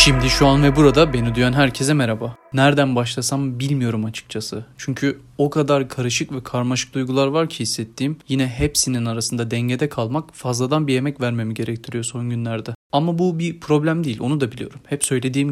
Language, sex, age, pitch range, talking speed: Turkish, male, 30-49, 125-145 Hz, 175 wpm